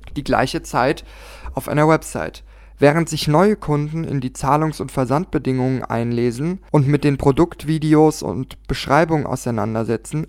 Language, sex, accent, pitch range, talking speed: German, male, German, 130-155 Hz, 135 wpm